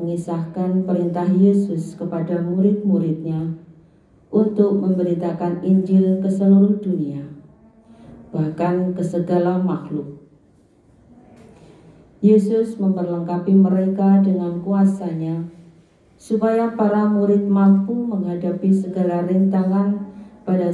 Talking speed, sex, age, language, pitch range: 80 wpm, female, 40-59, Indonesian, 170-200 Hz